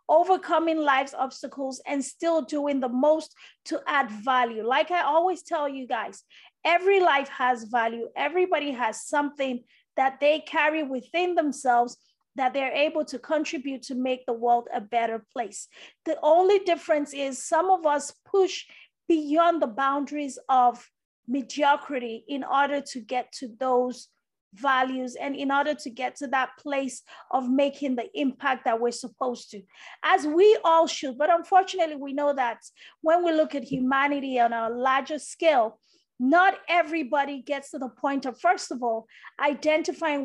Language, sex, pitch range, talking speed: English, female, 260-320 Hz, 160 wpm